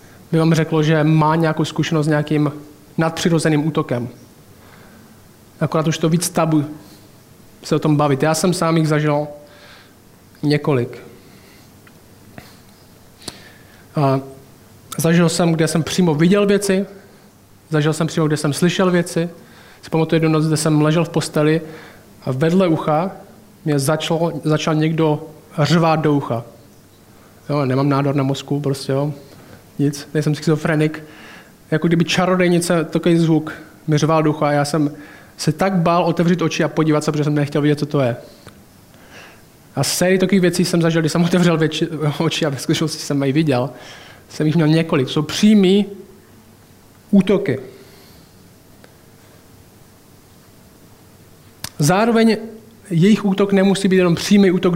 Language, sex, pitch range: Czech, male, 145-170 Hz